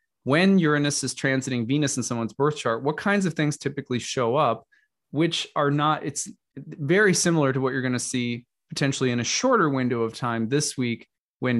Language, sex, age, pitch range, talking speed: English, male, 20-39, 120-160 Hz, 195 wpm